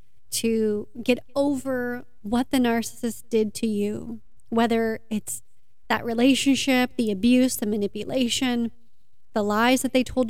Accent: American